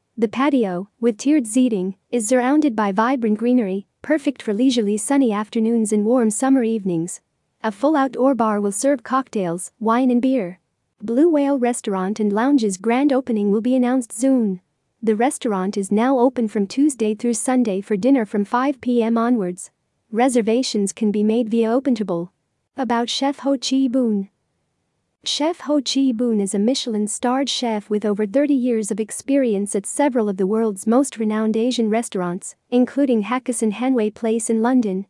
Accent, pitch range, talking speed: American, 215-255 Hz, 160 wpm